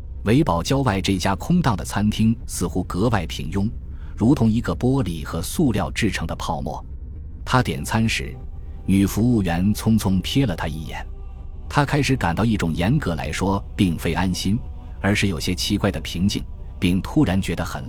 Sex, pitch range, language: male, 80-110 Hz, Chinese